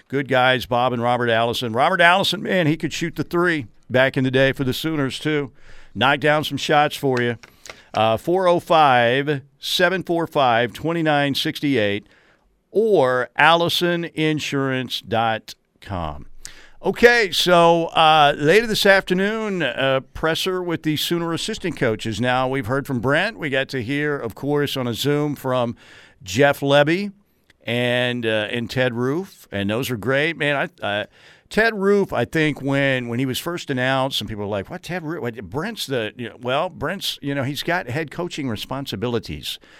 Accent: American